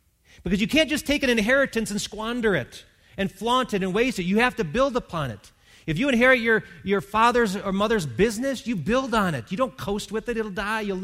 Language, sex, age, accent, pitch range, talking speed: English, male, 40-59, American, 130-200 Hz, 235 wpm